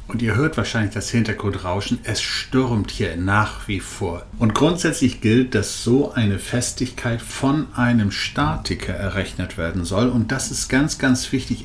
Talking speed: 160 wpm